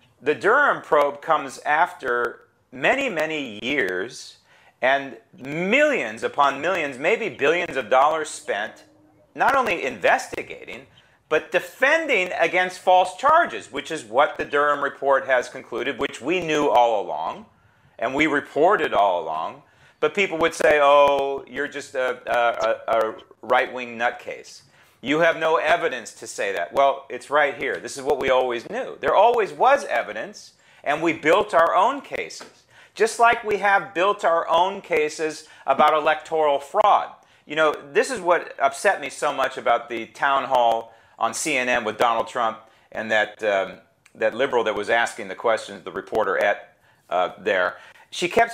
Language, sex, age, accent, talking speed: English, male, 40-59, American, 160 wpm